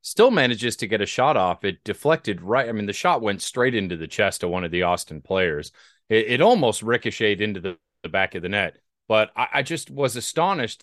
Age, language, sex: 30-49, English, male